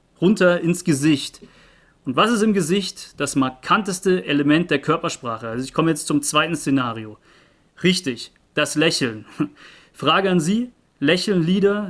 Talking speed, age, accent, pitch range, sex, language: 140 wpm, 30-49, German, 145-180 Hz, male, German